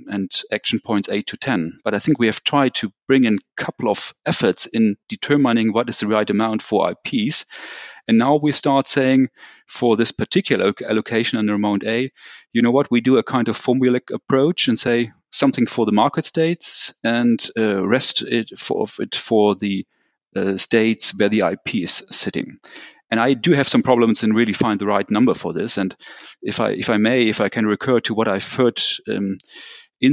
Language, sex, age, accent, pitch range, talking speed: German, male, 40-59, German, 105-125 Hz, 205 wpm